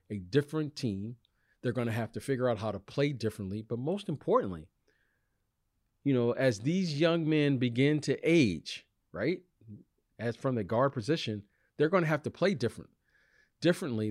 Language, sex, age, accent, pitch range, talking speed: English, male, 40-59, American, 110-145 Hz, 170 wpm